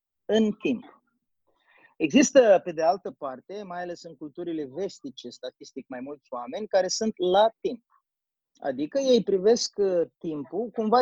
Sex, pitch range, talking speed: male, 160-230 Hz, 135 wpm